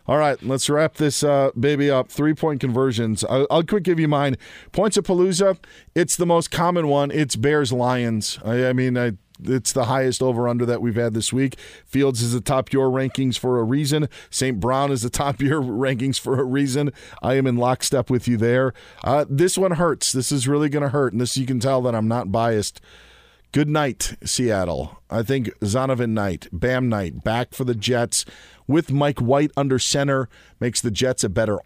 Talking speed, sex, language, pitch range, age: 210 wpm, male, English, 115-145 Hz, 40-59